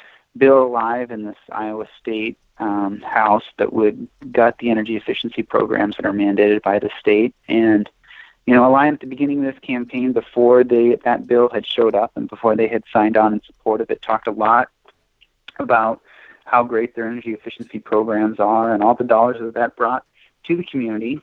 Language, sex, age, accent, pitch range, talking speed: English, male, 30-49, American, 110-130 Hz, 200 wpm